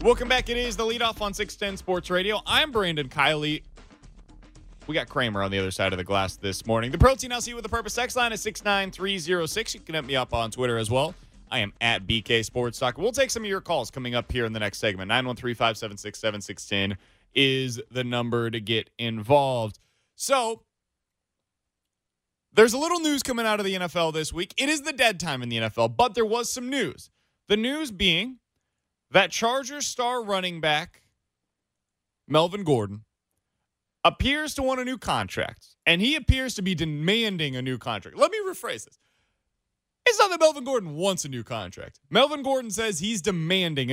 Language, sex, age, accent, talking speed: English, male, 20-39, American, 195 wpm